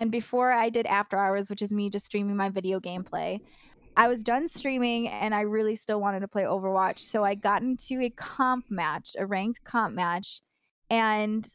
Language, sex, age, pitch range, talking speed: English, female, 20-39, 200-260 Hz, 195 wpm